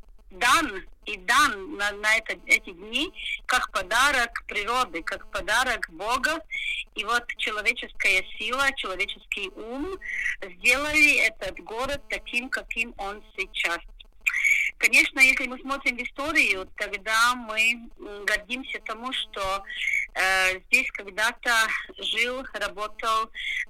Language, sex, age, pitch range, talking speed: Russian, female, 30-49, 205-275 Hz, 110 wpm